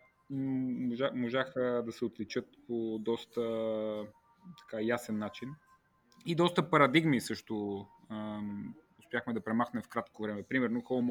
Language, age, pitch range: Bulgarian, 30-49, 110-130 Hz